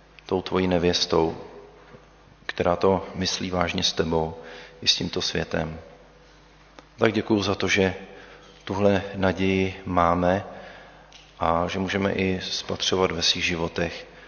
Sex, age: male, 40-59